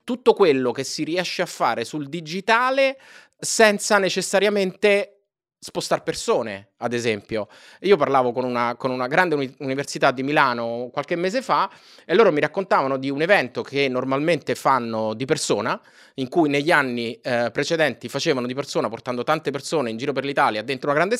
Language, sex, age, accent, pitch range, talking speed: Italian, male, 30-49, native, 125-175 Hz, 170 wpm